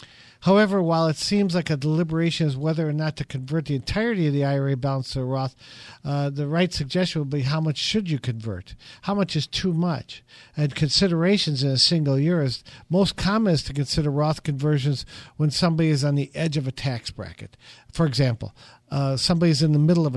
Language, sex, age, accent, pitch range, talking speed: English, male, 50-69, American, 135-165 Hz, 210 wpm